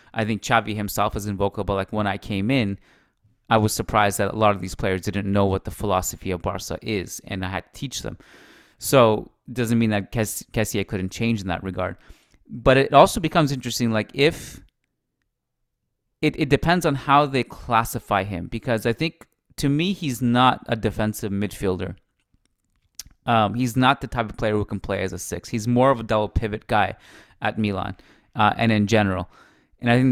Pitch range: 100-125 Hz